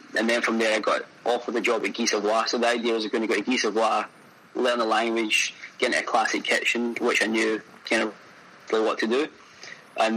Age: 20-39